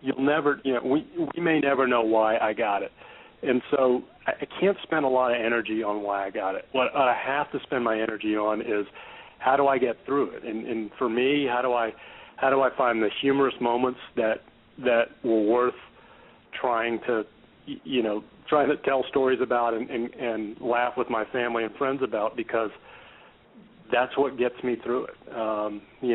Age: 40-59